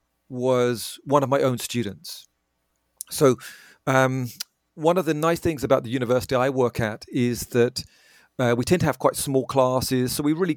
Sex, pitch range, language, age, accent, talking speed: male, 110-135 Hz, English, 40-59, British, 180 wpm